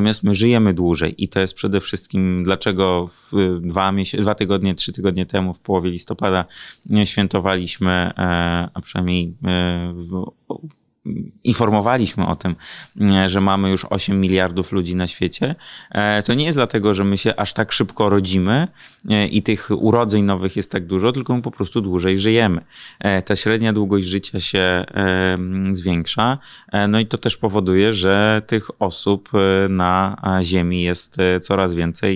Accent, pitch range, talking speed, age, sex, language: native, 90-105 Hz, 145 wpm, 20-39, male, Polish